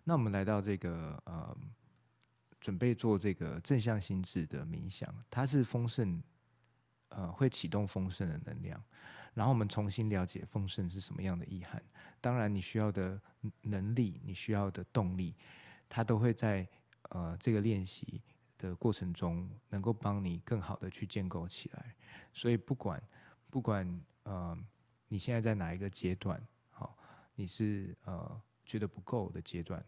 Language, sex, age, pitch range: Chinese, male, 20-39, 95-120 Hz